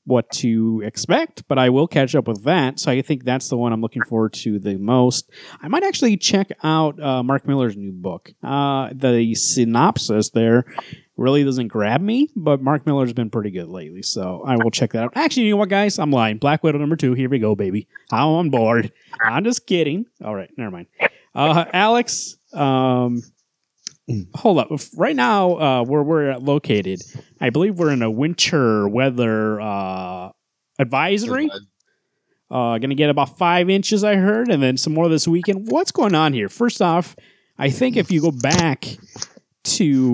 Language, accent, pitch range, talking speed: English, American, 120-185 Hz, 190 wpm